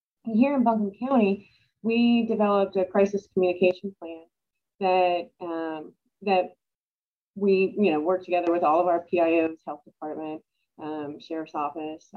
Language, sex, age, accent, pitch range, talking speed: English, female, 30-49, American, 185-215 Hz, 140 wpm